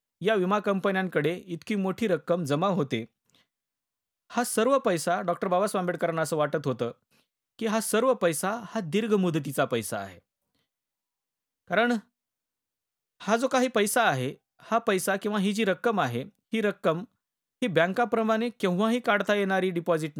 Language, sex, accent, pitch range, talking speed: Marathi, male, native, 160-220 Hz, 140 wpm